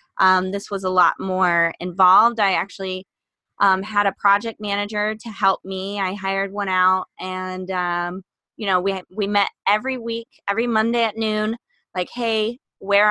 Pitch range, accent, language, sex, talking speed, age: 185-205 Hz, American, English, female, 170 wpm, 20-39